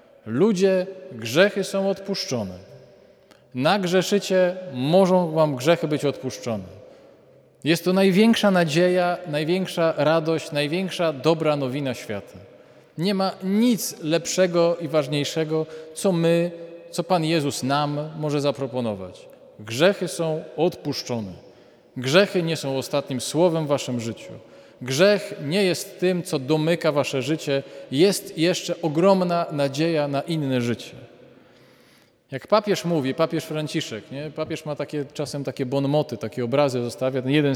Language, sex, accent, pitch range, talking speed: Polish, male, native, 135-175 Hz, 120 wpm